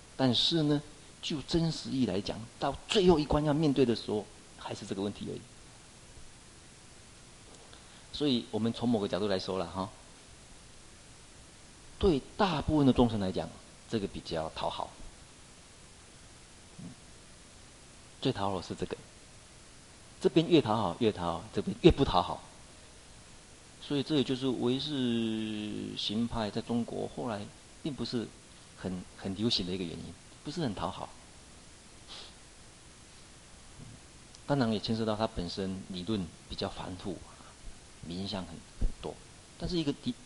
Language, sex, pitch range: Chinese, male, 100-130 Hz